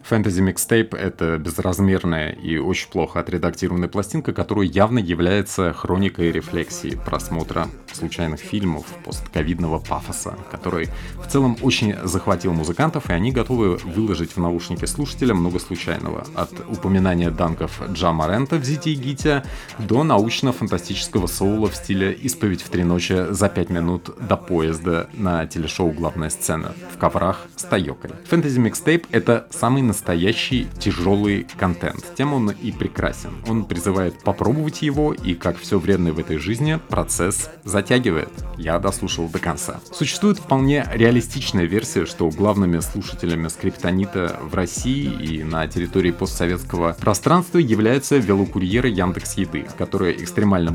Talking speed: 130 wpm